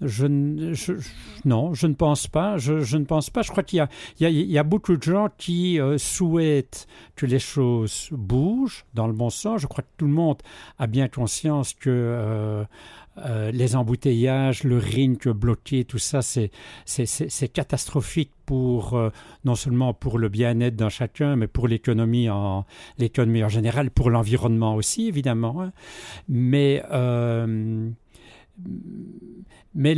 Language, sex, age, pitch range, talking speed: French, male, 60-79, 115-150 Hz, 170 wpm